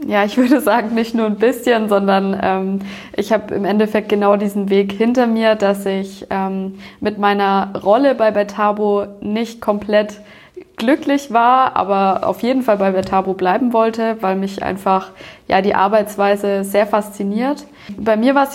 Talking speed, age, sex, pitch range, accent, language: 165 wpm, 20-39, female, 195-230 Hz, German, German